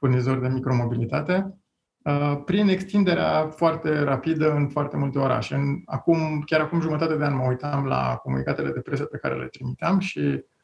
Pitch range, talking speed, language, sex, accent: 130-155 Hz, 165 wpm, Romanian, male, native